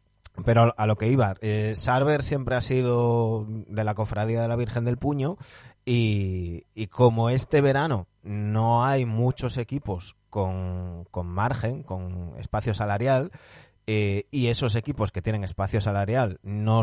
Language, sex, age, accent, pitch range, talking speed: Spanish, male, 30-49, Spanish, 100-120 Hz, 150 wpm